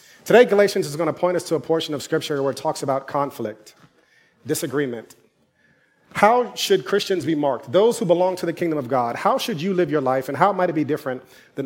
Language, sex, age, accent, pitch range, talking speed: English, male, 30-49, American, 135-180 Hz, 225 wpm